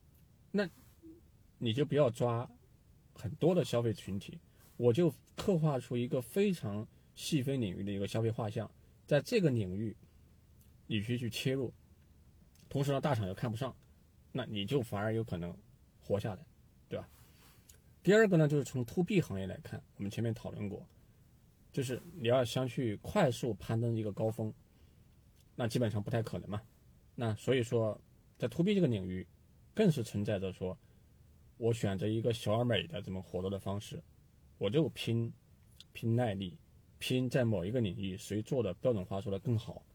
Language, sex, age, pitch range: Chinese, male, 20-39, 100-130 Hz